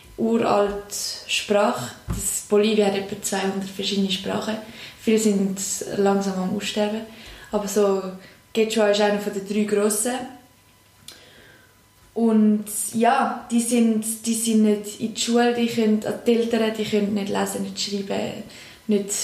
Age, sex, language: 20-39, female, German